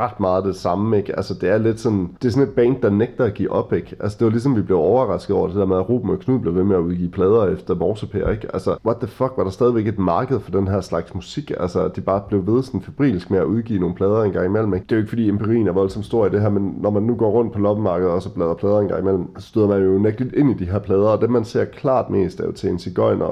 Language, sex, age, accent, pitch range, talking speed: Danish, male, 30-49, native, 95-110 Hz, 310 wpm